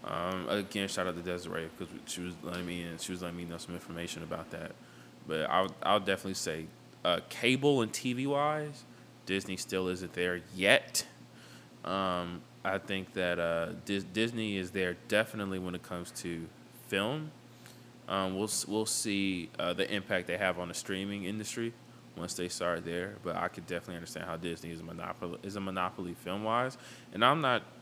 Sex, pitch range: male, 85-100 Hz